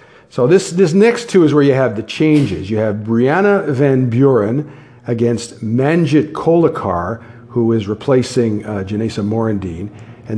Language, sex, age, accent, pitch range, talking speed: English, male, 50-69, American, 115-160 Hz, 150 wpm